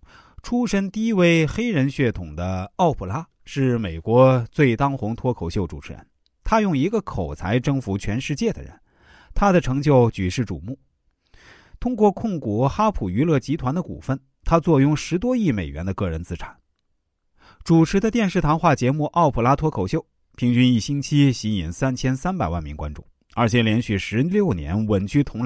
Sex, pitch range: male, 90-150 Hz